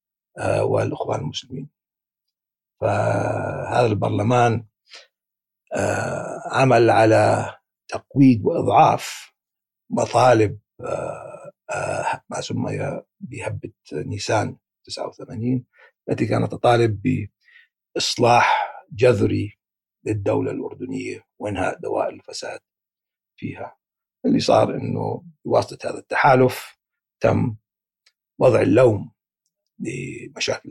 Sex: male